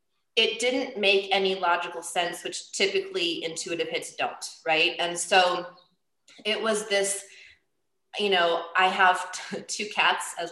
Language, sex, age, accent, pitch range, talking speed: English, female, 20-39, American, 170-200 Hz, 145 wpm